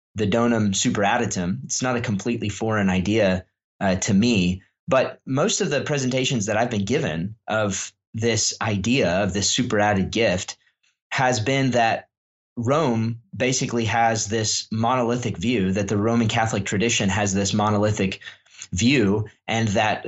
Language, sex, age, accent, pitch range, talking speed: English, male, 20-39, American, 100-120 Hz, 140 wpm